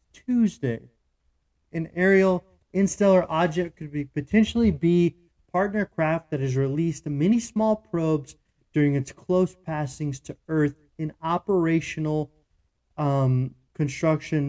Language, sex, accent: English, male, American